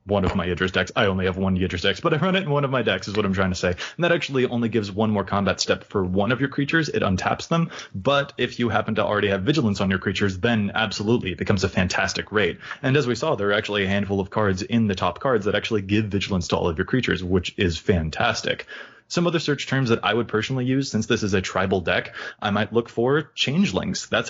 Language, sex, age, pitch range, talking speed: English, male, 20-39, 95-120 Hz, 270 wpm